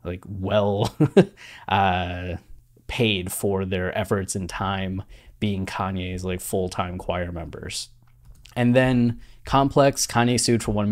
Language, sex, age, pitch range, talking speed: English, male, 20-39, 100-120 Hz, 115 wpm